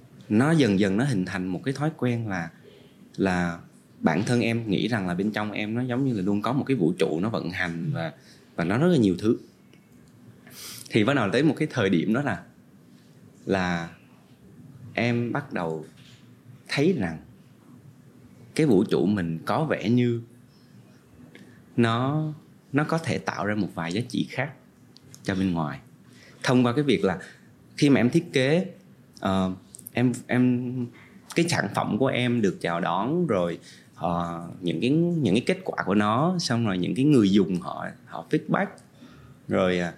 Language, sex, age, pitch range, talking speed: Vietnamese, male, 20-39, 90-125 Hz, 175 wpm